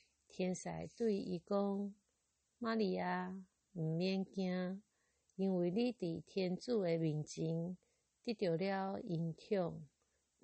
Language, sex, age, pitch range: Chinese, female, 50-69, 165-200 Hz